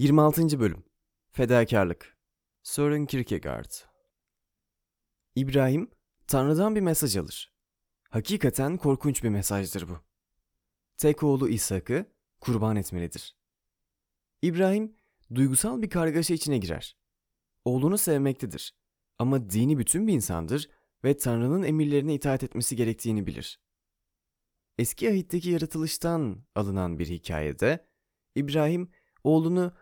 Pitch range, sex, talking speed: 110-160 Hz, male, 95 wpm